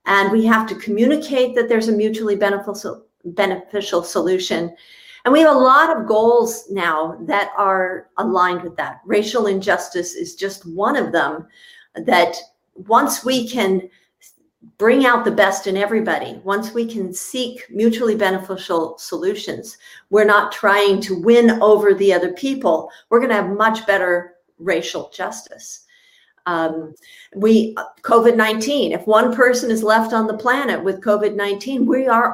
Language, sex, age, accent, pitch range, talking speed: English, female, 50-69, American, 190-230 Hz, 150 wpm